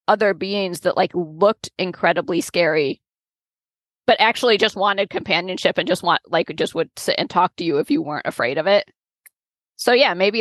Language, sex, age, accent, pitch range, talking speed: English, female, 20-39, American, 180-220 Hz, 185 wpm